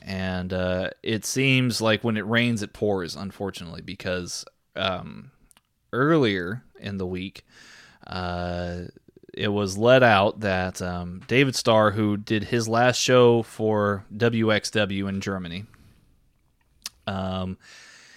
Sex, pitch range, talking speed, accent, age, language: male, 95-115 Hz, 120 wpm, American, 20-39, English